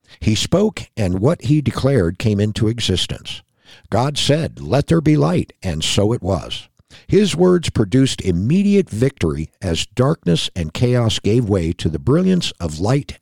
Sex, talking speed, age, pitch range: male, 160 wpm, 60-79, 95-140 Hz